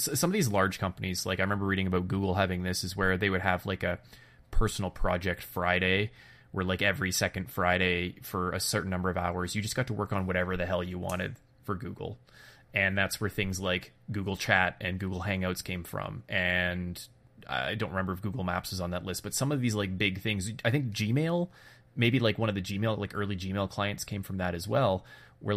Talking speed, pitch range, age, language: 225 wpm, 90-110 Hz, 20-39, English